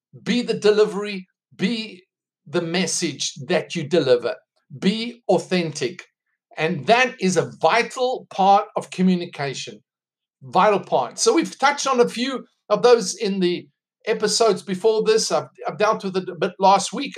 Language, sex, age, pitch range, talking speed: English, male, 50-69, 185-235 Hz, 150 wpm